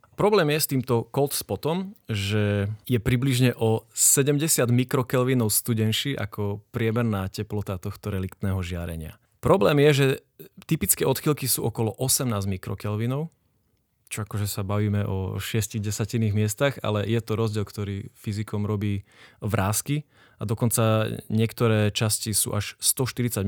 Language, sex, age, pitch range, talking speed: Slovak, male, 20-39, 105-125 Hz, 130 wpm